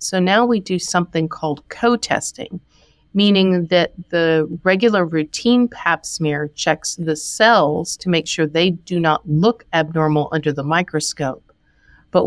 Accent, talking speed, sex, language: American, 140 wpm, female, English